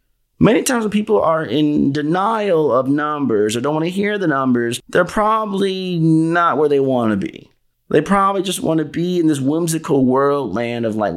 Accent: American